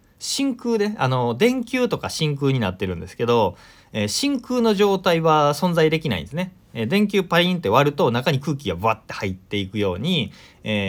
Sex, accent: male, native